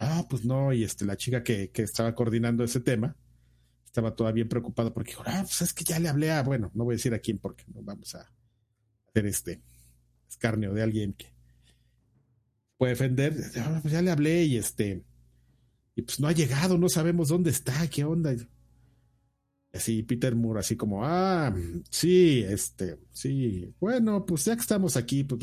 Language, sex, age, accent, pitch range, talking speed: Spanish, male, 50-69, Mexican, 105-145 Hz, 190 wpm